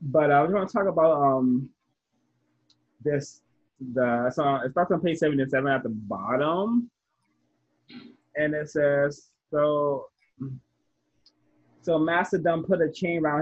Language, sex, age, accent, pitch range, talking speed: English, male, 20-39, American, 125-155 Hz, 140 wpm